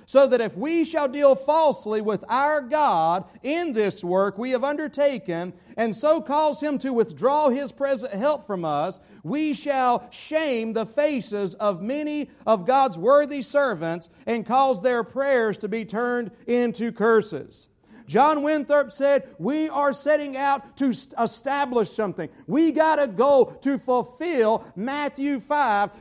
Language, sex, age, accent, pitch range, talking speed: English, male, 50-69, American, 225-275 Hz, 150 wpm